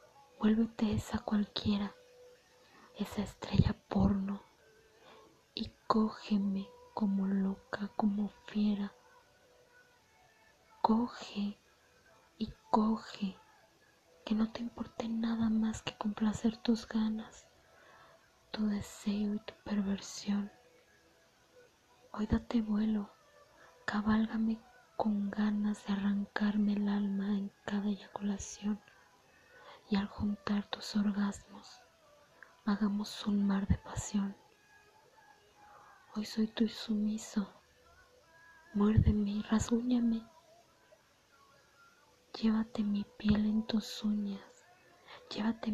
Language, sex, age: Spanish, female, 20-39